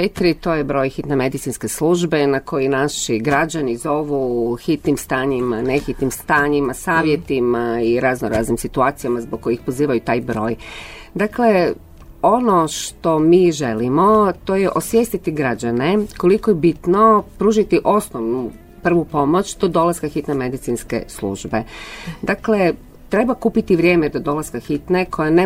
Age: 40-59